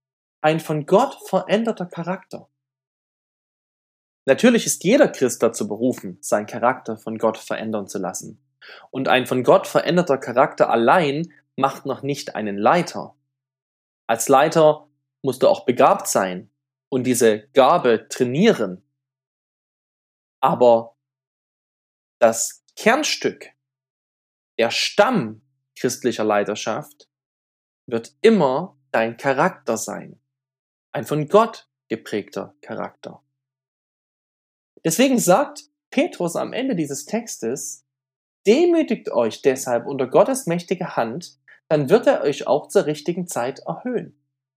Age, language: 20-39, German